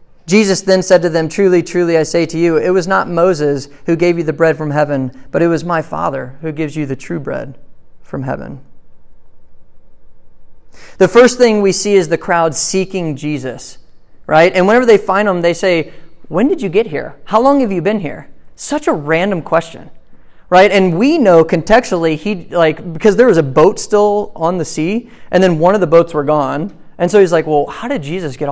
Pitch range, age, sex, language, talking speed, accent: 155-190 Hz, 30-49, male, English, 210 wpm, American